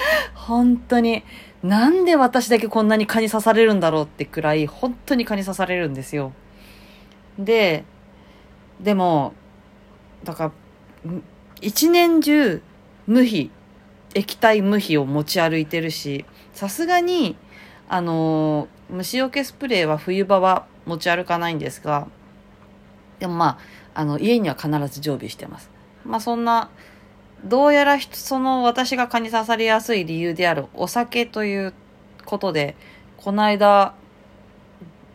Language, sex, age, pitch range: Japanese, female, 40-59, 155-240 Hz